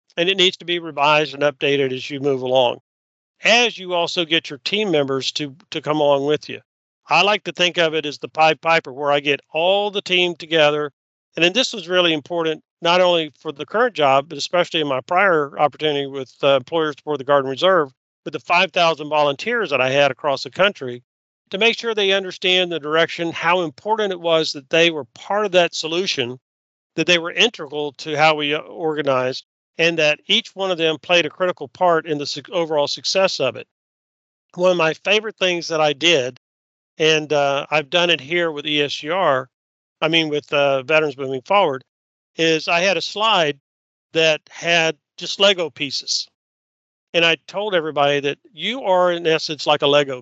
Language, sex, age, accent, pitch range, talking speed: English, male, 50-69, American, 145-175 Hz, 195 wpm